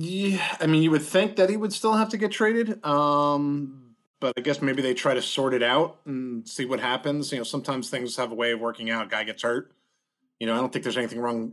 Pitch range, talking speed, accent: 115-145 Hz, 265 wpm, American